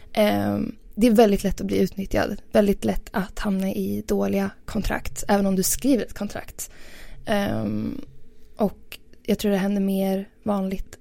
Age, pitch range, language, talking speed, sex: 20-39, 185-220 Hz, Swedish, 145 wpm, female